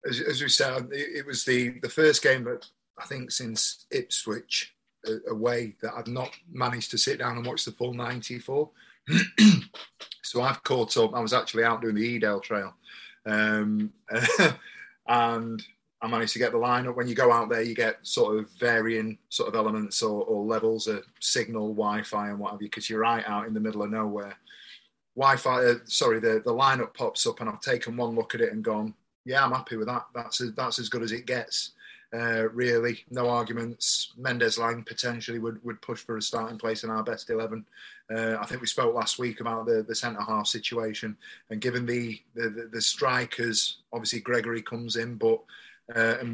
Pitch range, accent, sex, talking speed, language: 110-125 Hz, British, male, 200 wpm, English